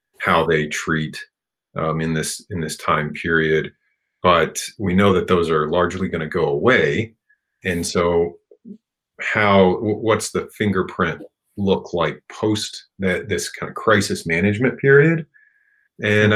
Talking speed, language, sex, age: 140 wpm, English, male, 40-59